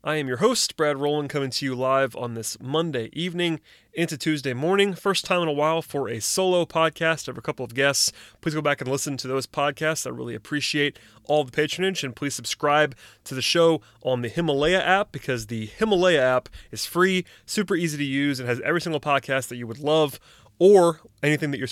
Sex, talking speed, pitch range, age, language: male, 215 wpm, 125-155 Hz, 30-49, English